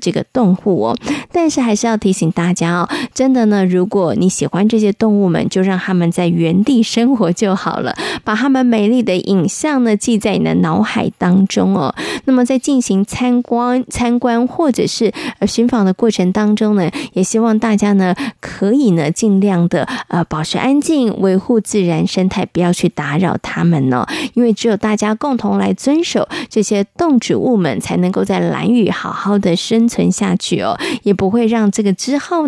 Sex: female